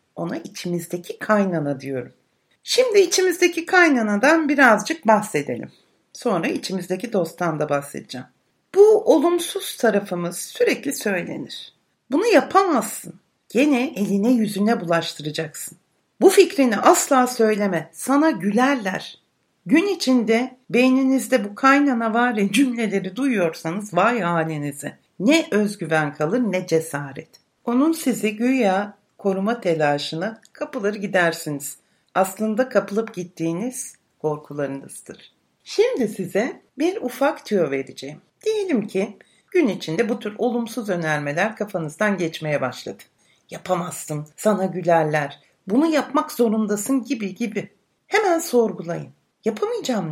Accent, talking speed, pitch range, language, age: native, 100 wpm, 175-270 Hz, Turkish, 60-79